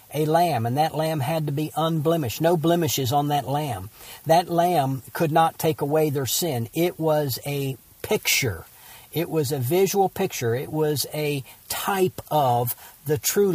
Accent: American